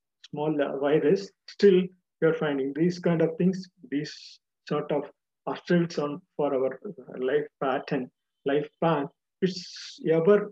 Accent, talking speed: native, 130 wpm